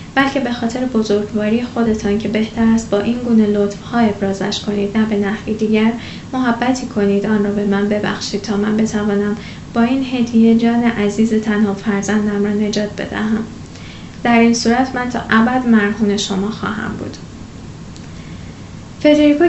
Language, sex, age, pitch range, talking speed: Persian, female, 10-29, 210-245 Hz, 150 wpm